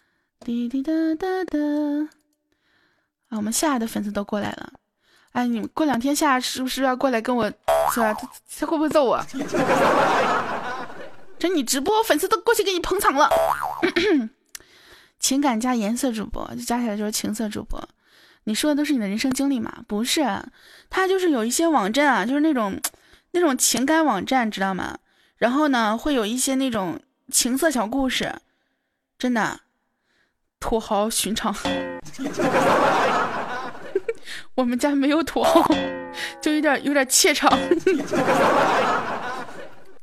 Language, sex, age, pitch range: Chinese, female, 10-29, 240-320 Hz